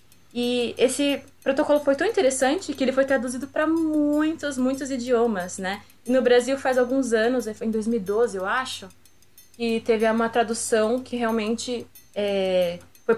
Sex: female